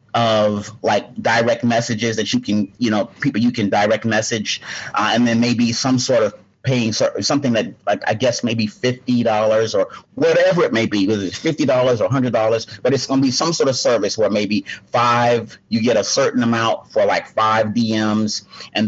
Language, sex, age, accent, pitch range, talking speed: English, male, 30-49, American, 110-125 Hz, 210 wpm